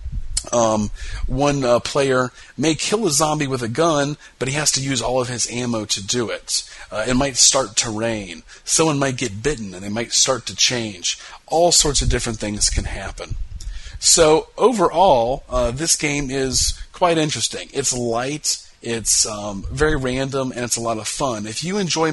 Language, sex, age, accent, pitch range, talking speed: English, male, 40-59, American, 115-145 Hz, 185 wpm